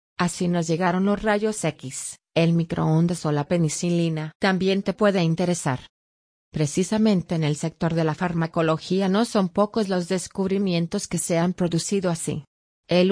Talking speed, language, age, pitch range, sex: 150 wpm, English, 30-49, 160-185 Hz, female